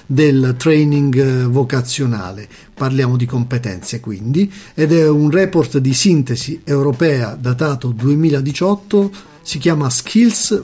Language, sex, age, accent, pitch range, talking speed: Italian, male, 50-69, native, 130-170 Hz, 105 wpm